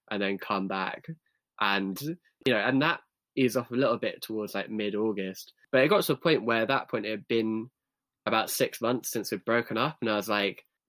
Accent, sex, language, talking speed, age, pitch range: British, male, English, 220 wpm, 10-29, 100-110 Hz